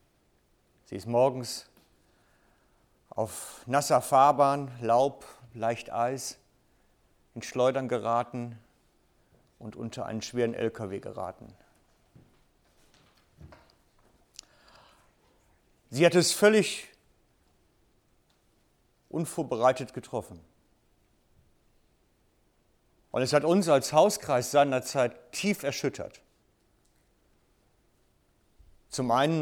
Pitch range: 110-145 Hz